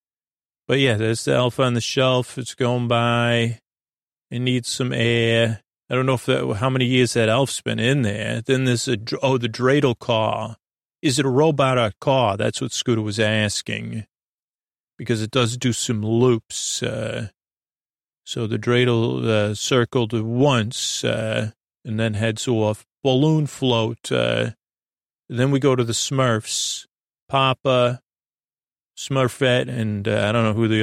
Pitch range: 115-130 Hz